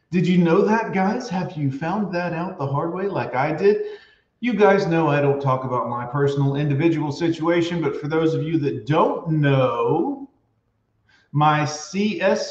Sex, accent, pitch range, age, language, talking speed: male, American, 125-165 Hz, 40-59, English, 180 wpm